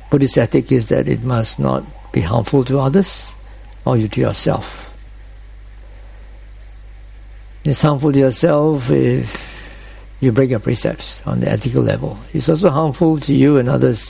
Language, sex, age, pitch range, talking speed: English, male, 60-79, 100-140 Hz, 145 wpm